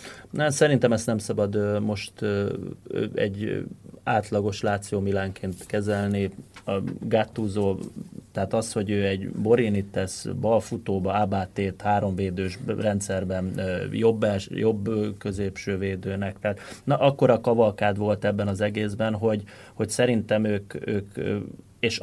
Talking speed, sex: 115 wpm, male